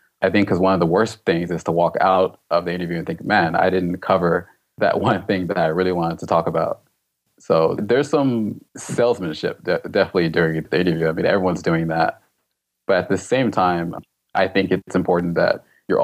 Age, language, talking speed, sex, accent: 20-39, English, 205 wpm, male, American